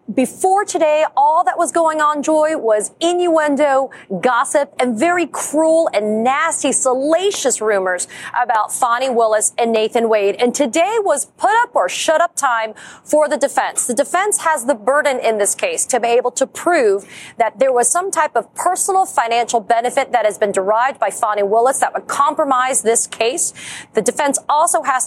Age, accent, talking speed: 30-49, American, 175 wpm